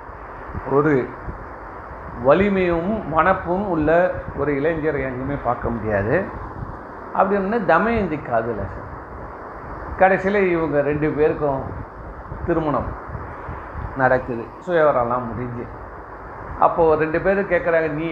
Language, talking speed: Tamil, 85 wpm